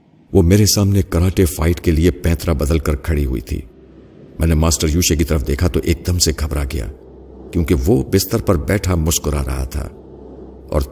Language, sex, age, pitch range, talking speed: Urdu, male, 50-69, 75-100 Hz, 190 wpm